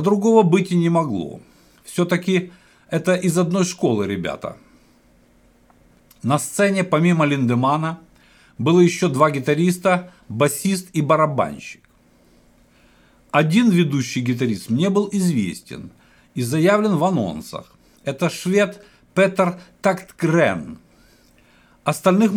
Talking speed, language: 100 wpm, Russian